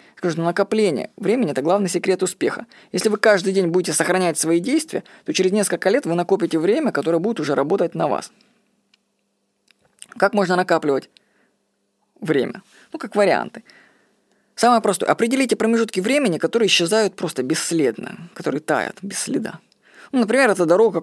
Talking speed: 150 wpm